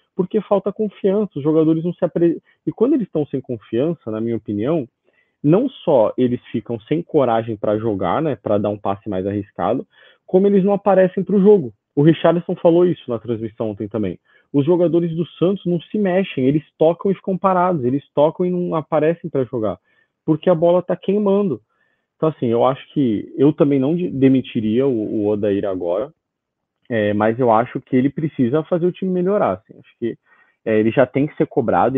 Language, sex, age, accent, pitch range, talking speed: Portuguese, male, 30-49, Brazilian, 110-170 Hz, 195 wpm